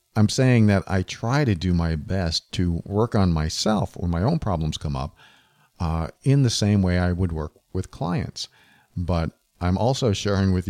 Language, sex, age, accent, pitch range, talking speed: English, male, 50-69, American, 85-105 Hz, 190 wpm